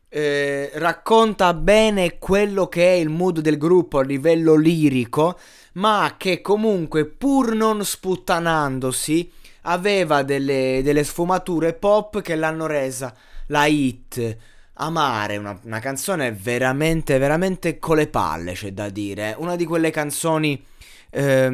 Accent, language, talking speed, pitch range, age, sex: native, Italian, 130 wpm, 115-155 Hz, 20-39, male